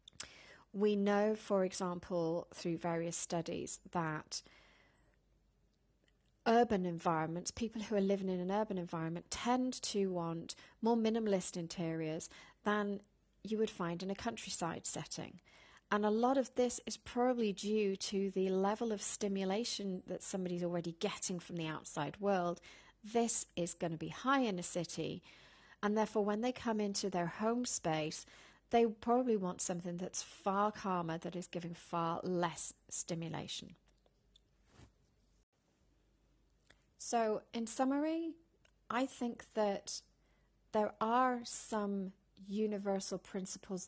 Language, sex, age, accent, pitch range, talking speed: English, female, 40-59, British, 175-215 Hz, 130 wpm